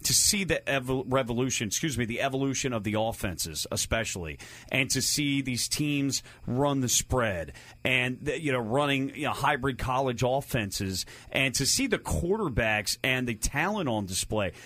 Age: 30-49